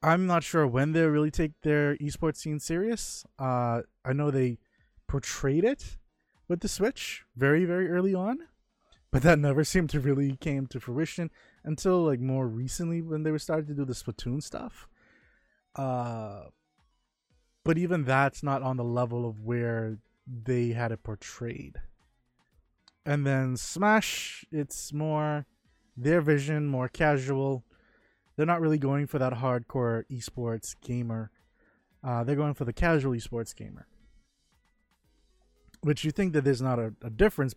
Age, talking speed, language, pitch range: 20-39, 150 wpm, English, 120-155 Hz